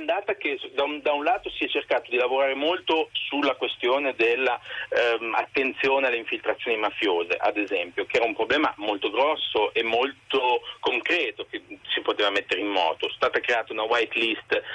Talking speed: 170 wpm